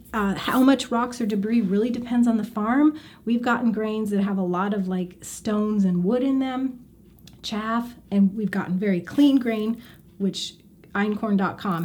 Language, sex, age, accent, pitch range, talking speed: English, female, 30-49, American, 185-230 Hz, 170 wpm